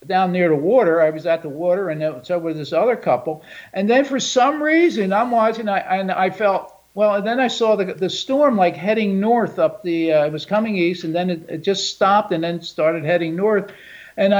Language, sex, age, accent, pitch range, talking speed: English, male, 50-69, American, 165-210 Hz, 240 wpm